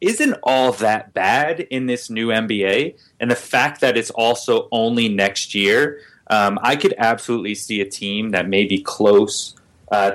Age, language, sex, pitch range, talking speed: 30-49, English, male, 100-125 Hz, 175 wpm